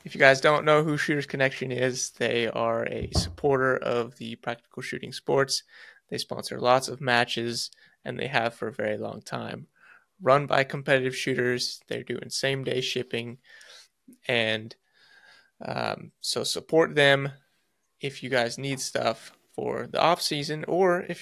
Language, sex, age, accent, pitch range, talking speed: English, male, 20-39, American, 120-140 Hz, 160 wpm